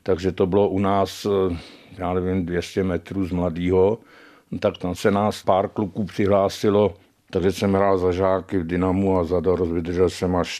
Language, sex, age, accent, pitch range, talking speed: Czech, male, 60-79, native, 95-105 Hz, 175 wpm